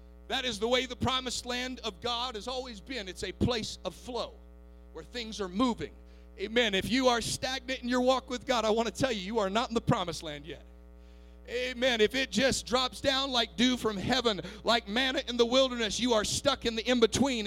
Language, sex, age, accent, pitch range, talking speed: English, male, 40-59, American, 205-265 Hz, 225 wpm